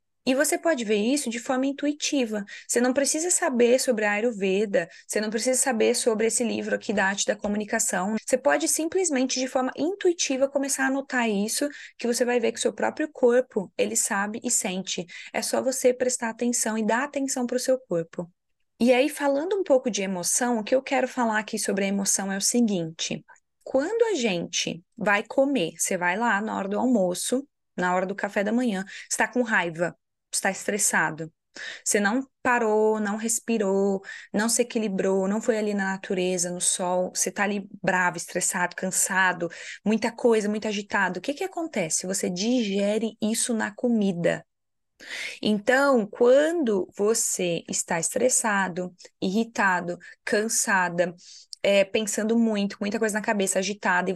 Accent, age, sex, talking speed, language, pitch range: Brazilian, 20-39, female, 170 wpm, Portuguese, 195-255 Hz